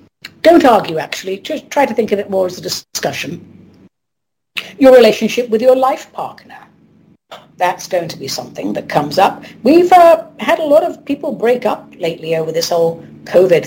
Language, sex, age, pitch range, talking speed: English, female, 50-69, 180-265 Hz, 180 wpm